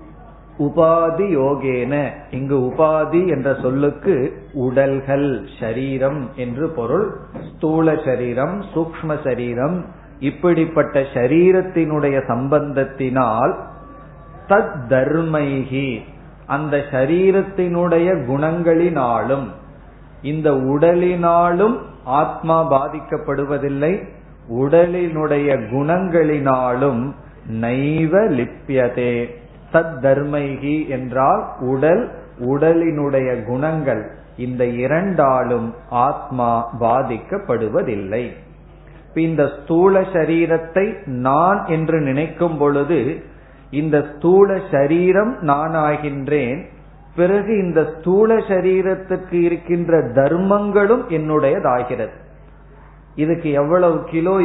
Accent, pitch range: native, 135-170 Hz